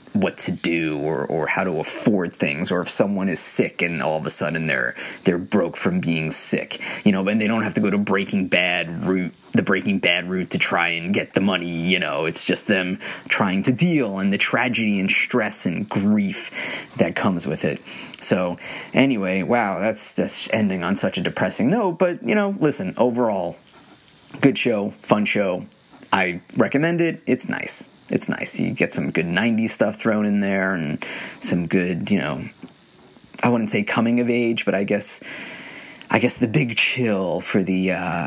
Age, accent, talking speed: 30-49, American, 195 wpm